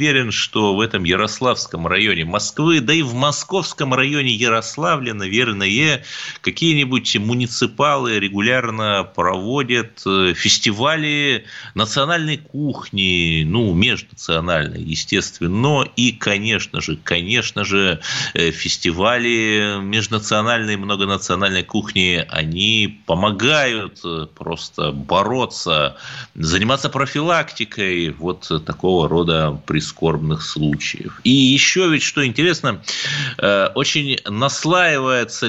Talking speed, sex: 90 wpm, male